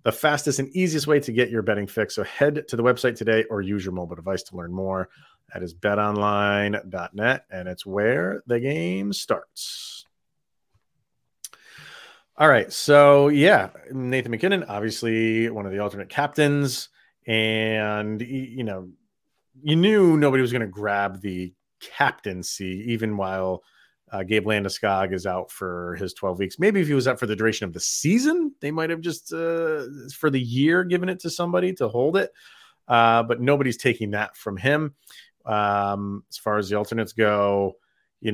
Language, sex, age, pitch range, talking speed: English, male, 30-49, 100-145 Hz, 170 wpm